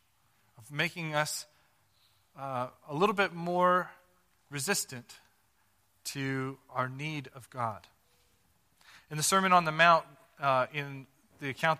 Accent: American